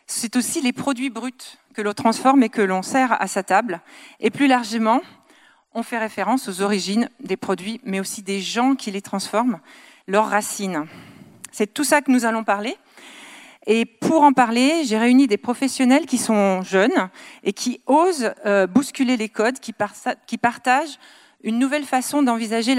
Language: French